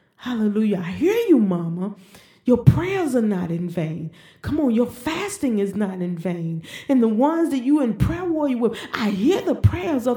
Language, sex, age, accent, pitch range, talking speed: English, female, 40-59, American, 190-310 Hz, 195 wpm